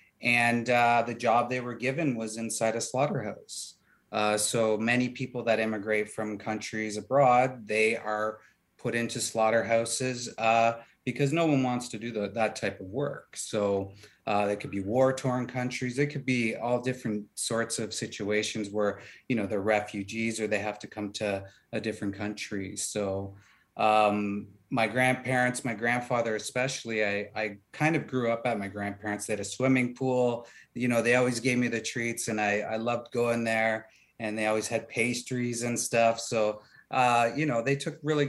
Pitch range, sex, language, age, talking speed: 110-125 Hz, male, English, 30-49, 180 wpm